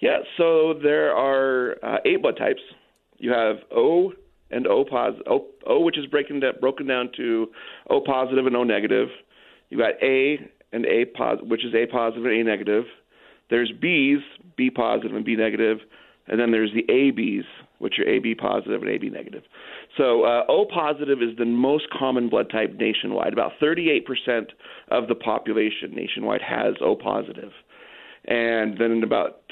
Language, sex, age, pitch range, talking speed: English, male, 40-59, 115-160 Hz, 165 wpm